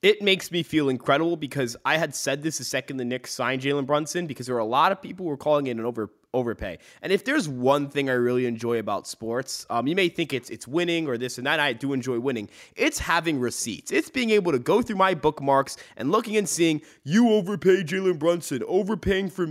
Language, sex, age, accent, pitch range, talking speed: English, male, 20-39, American, 140-200 Hz, 235 wpm